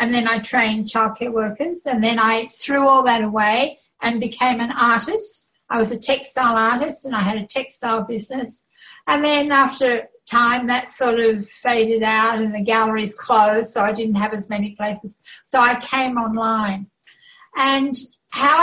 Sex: female